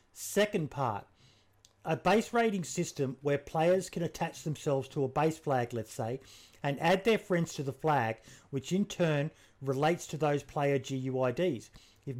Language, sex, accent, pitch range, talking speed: English, male, Australian, 125-160 Hz, 160 wpm